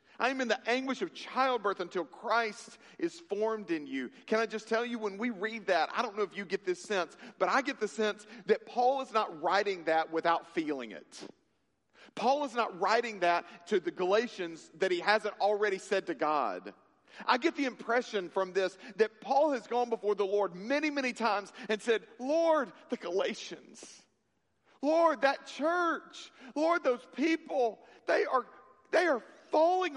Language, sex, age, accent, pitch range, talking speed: English, male, 40-59, American, 210-275 Hz, 180 wpm